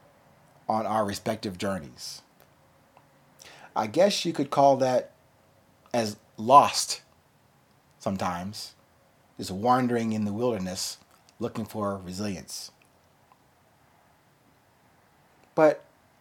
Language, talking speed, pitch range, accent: English, 80 wpm, 105-135 Hz, American